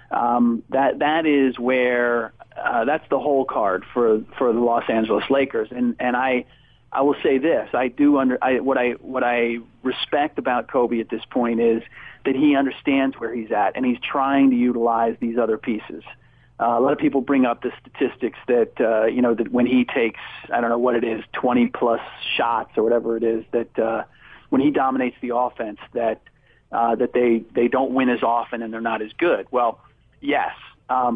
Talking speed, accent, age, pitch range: 205 wpm, American, 40-59, 120-140 Hz